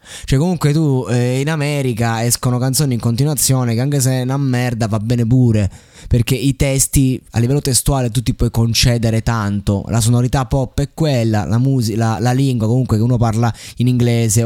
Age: 20-39